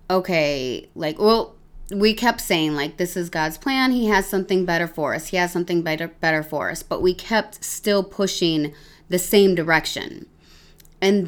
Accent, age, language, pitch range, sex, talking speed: American, 20-39, English, 175-220 Hz, female, 175 wpm